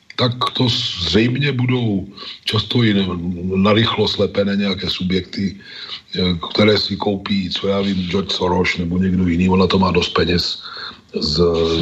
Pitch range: 95-120 Hz